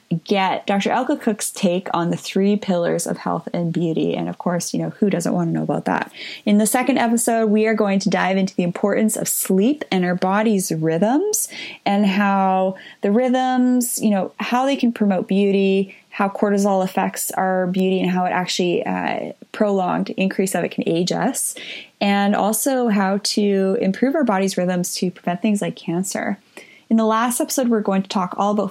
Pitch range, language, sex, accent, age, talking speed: 180-220 Hz, English, female, American, 20-39, 195 wpm